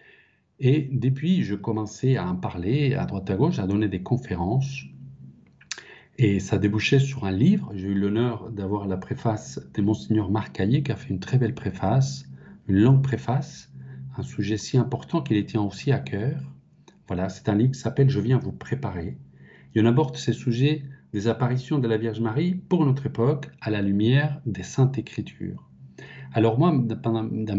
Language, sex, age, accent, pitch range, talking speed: French, male, 40-59, French, 100-135 Hz, 180 wpm